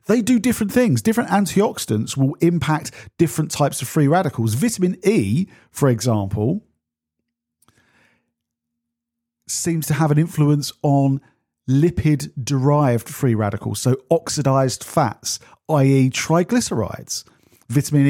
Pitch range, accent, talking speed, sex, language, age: 115-155 Hz, British, 105 wpm, male, English, 50-69